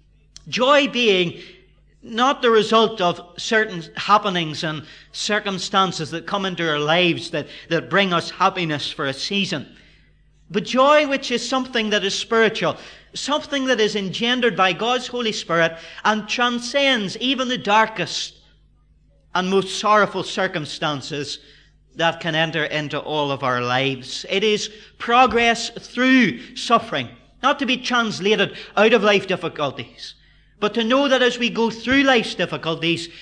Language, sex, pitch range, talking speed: English, male, 160-225 Hz, 140 wpm